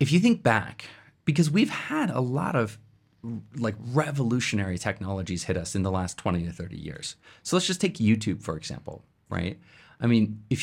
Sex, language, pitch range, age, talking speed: male, English, 110-145 Hz, 30-49, 185 wpm